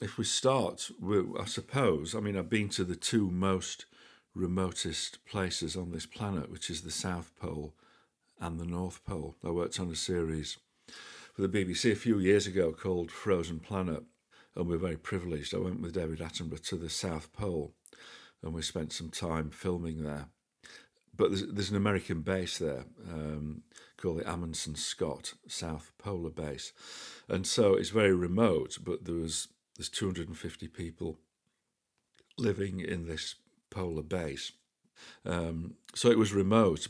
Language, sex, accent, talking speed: English, male, British, 160 wpm